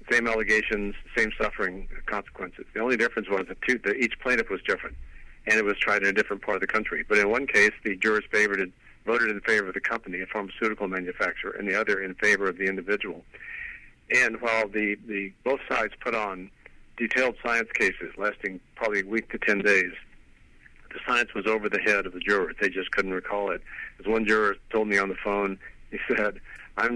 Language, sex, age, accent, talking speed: English, male, 50-69, American, 210 wpm